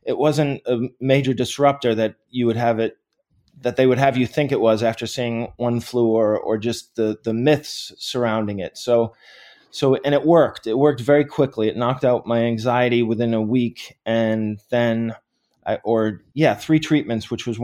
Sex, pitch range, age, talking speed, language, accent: male, 115-135 Hz, 20-39, 190 wpm, English, American